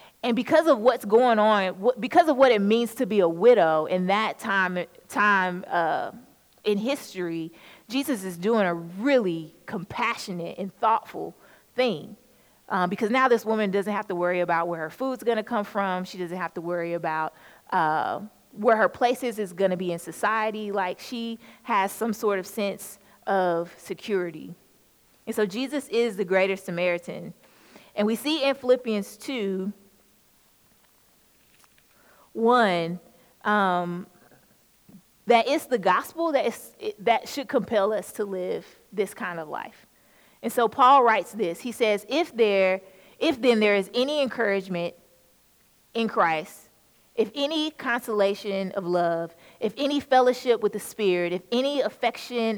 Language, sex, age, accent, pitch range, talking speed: English, female, 30-49, American, 185-245 Hz, 155 wpm